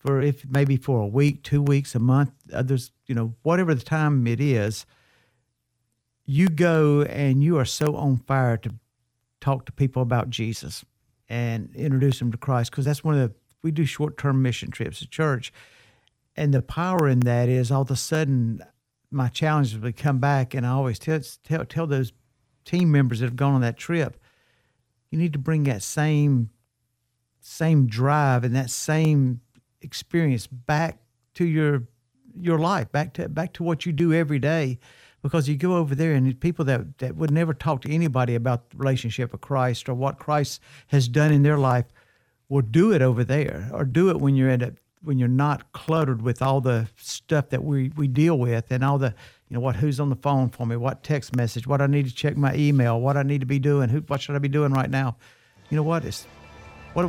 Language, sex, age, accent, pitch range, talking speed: English, male, 50-69, American, 125-150 Hz, 210 wpm